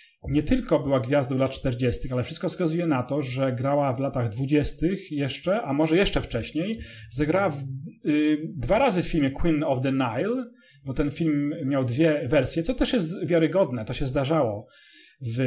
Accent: Polish